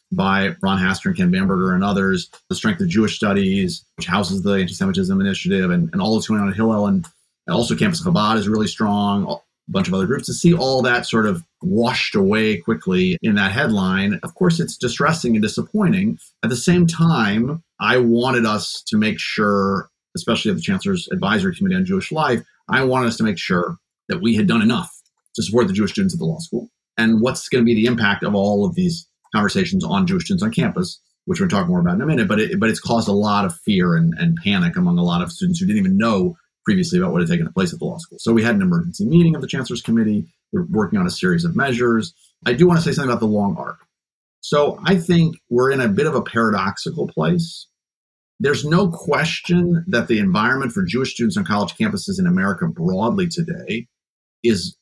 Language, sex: English, male